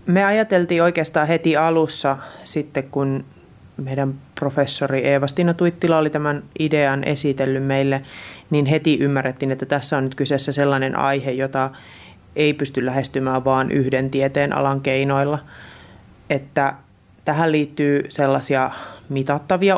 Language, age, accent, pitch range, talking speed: Finnish, 30-49, native, 135-150 Hz, 120 wpm